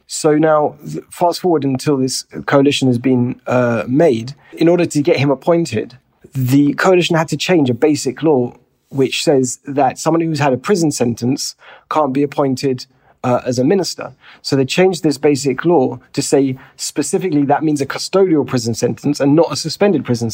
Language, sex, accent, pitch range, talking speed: English, male, British, 125-150 Hz, 180 wpm